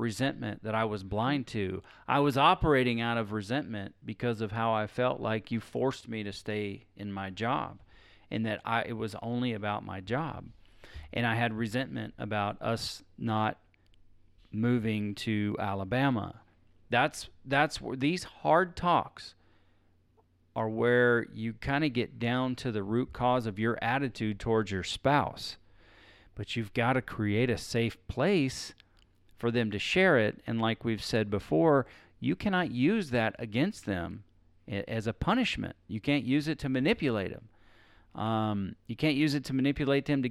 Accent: American